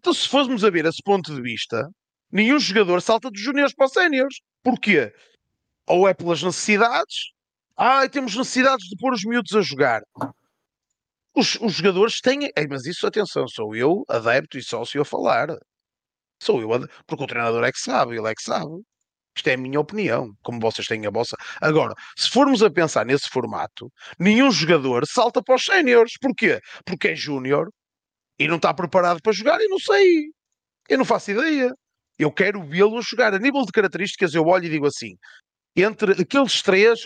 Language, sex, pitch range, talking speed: Portuguese, male, 160-240 Hz, 190 wpm